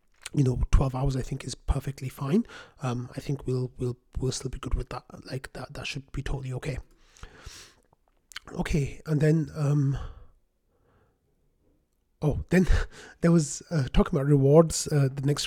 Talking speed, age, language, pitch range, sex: 165 wpm, 30-49, English, 130-150 Hz, male